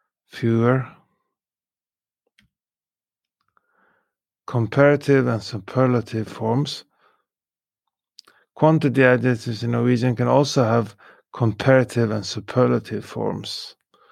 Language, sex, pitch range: English, male, 115-135 Hz